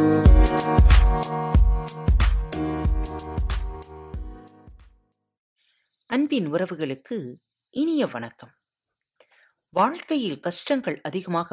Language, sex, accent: Tamil, female, native